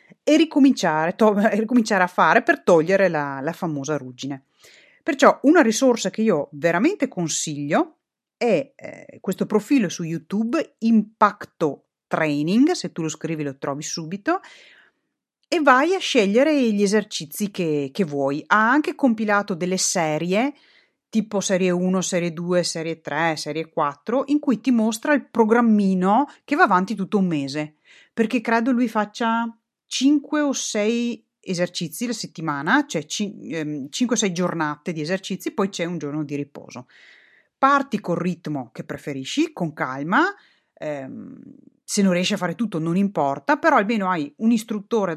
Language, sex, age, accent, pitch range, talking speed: Italian, female, 30-49, native, 165-245 Hz, 155 wpm